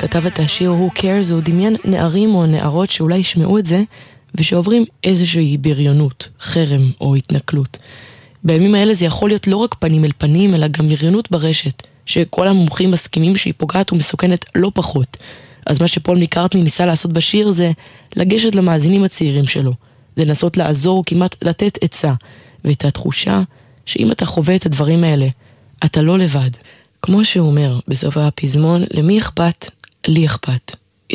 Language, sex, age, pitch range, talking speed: Hebrew, female, 20-39, 140-180 Hz, 150 wpm